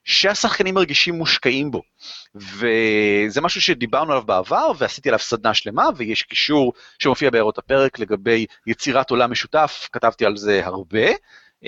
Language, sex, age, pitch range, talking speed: Hebrew, male, 30-49, 120-170 Hz, 135 wpm